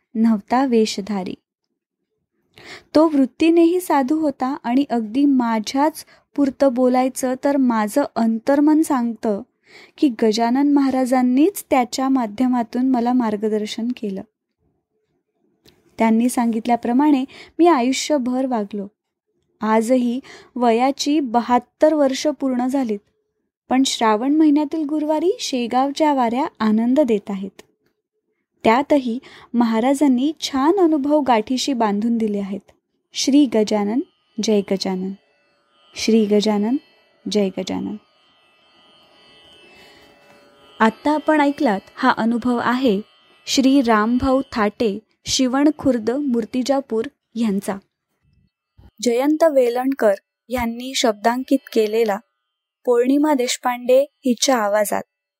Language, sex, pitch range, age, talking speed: Marathi, female, 220-280 Hz, 20-39, 85 wpm